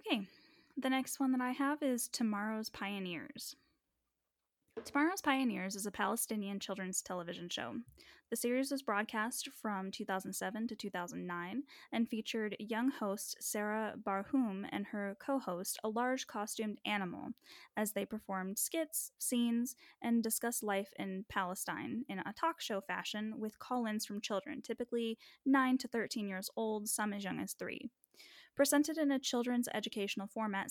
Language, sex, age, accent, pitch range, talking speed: English, female, 10-29, American, 200-265 Hz, 145 wpm